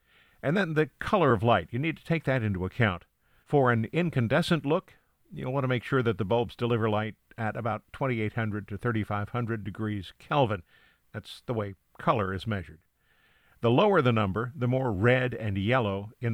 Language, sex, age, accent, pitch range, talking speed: English, male, 50-69, American, 100-130 Hz, 185 wpm